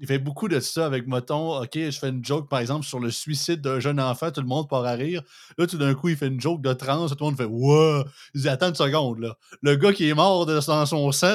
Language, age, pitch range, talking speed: French, 30-49, 130-170 Hz, 295 wpm